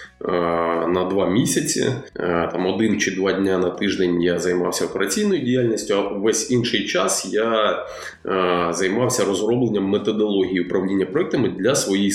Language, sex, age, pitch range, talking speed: Ukrainian, male, 20-39, 95-130 Hz, 130 wpm